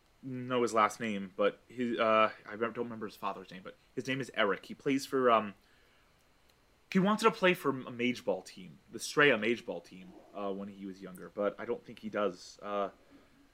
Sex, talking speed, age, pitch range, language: male, 205 wpm, 20-39, 90-120 Hz, English